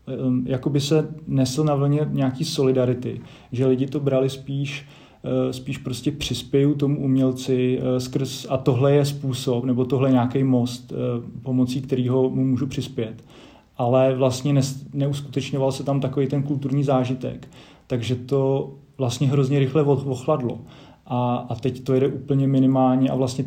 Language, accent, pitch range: Czech, native, 120-135 Hz